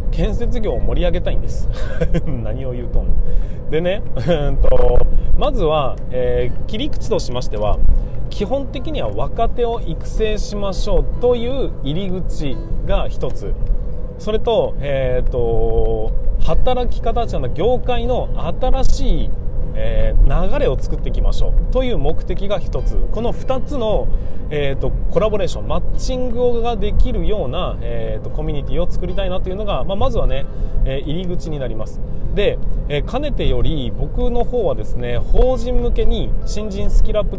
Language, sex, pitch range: Japanese, male, 120-185 Hz